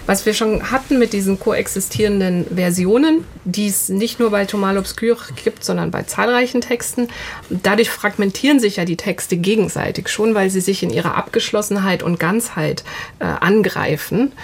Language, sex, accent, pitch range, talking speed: German, female, German, 185-220 Hz, 160 wpm